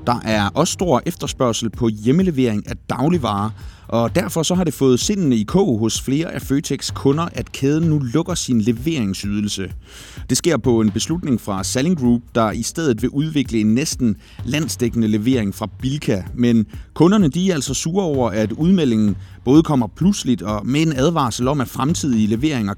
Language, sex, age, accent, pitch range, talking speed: Danish, male, 30-49, native, 110-145 Hz, 180 wpm